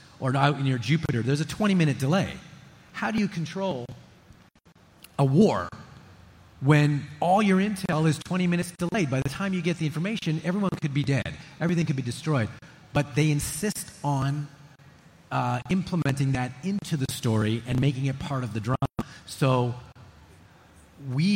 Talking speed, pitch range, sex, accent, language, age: 160 wpm, 130-160 Hz, male, American, English, 40-59